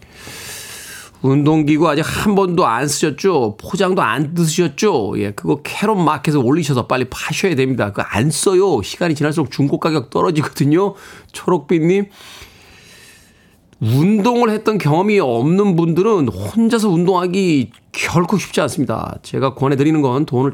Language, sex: Korean, male